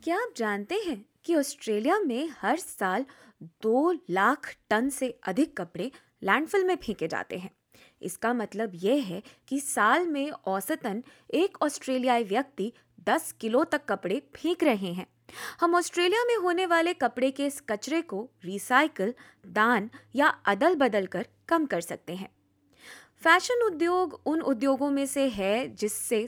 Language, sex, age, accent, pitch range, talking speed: Hindi, female, 20-39, native, 200-300 Hz, 150 wpm